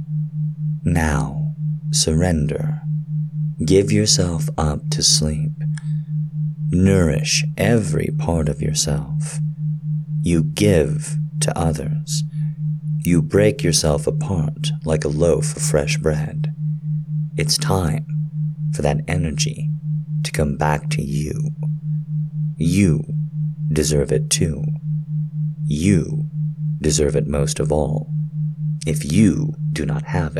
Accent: American